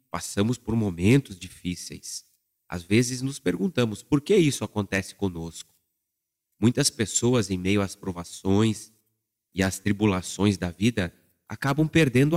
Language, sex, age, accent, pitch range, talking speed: Portuguese, male, 30-49, Brazilian, 95-120 Hz, 125 wpm